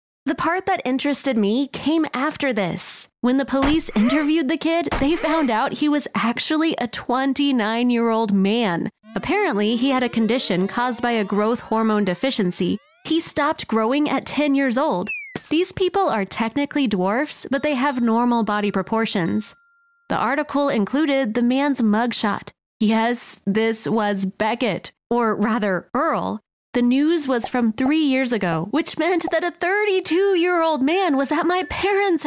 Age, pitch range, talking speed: 20-39, 220-300 Hz, 150 wpm